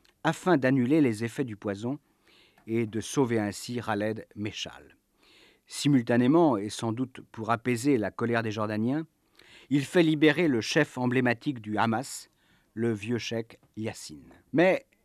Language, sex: French, male